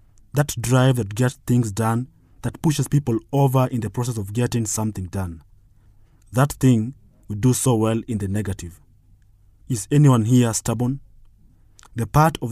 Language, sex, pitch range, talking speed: English, male, 105-130 Hz, 160 wpm